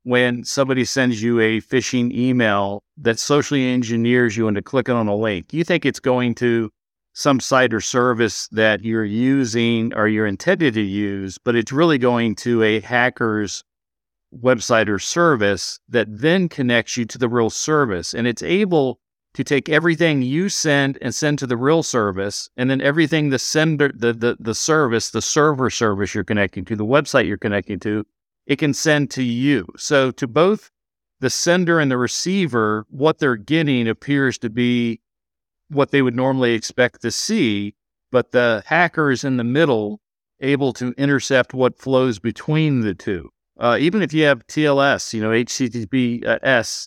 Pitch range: 110-140 Hz